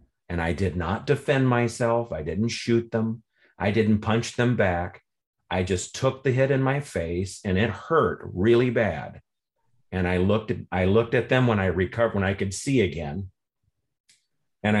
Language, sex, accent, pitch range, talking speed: English, male, American, 95-125 Hz, 180 wpm